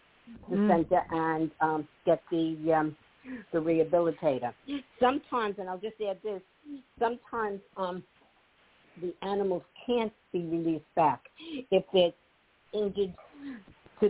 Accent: American